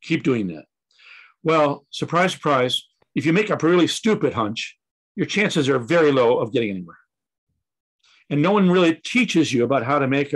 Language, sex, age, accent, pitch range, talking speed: English, male, 60-79, American, 140-170 Hz, 185 wpm